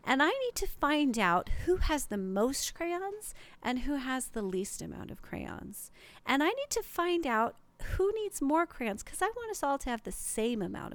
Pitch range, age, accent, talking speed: 205-280 Hz, 40-59, American, 215 wpm